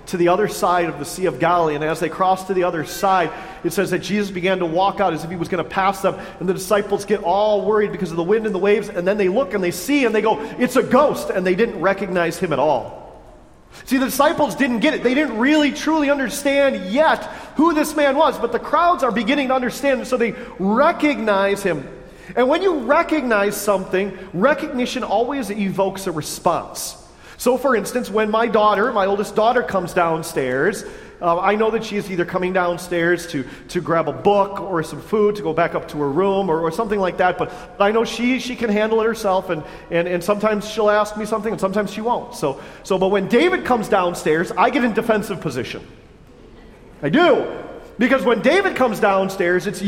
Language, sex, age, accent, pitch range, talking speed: English, male, 40-59, American, 185-250 Hz, 220 wpm